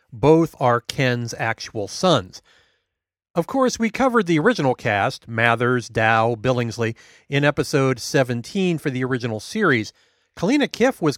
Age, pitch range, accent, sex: 40-59, 130-195 Hz, American, male